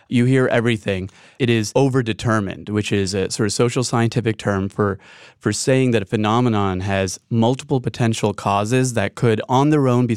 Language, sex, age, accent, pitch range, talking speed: English, male, 30-49, American, 105-125 Hz, 175 wpm